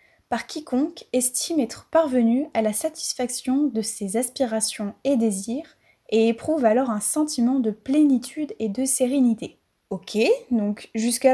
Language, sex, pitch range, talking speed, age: French, female, 220-275 Hz, 140 wpm, 20-39